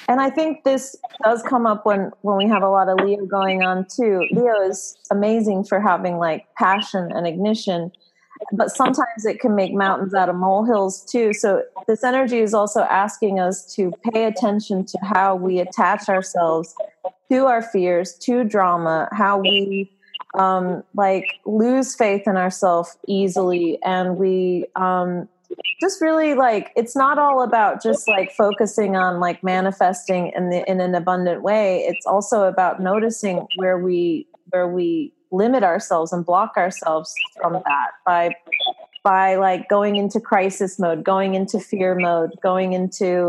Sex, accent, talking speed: female, American, 160 wpm